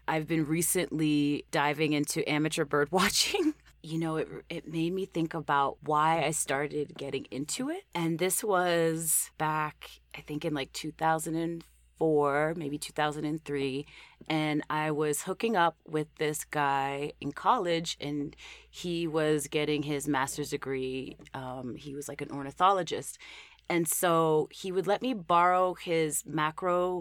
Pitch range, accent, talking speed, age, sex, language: 145-180 Hz, American, 145 wpm, 30-49, female, English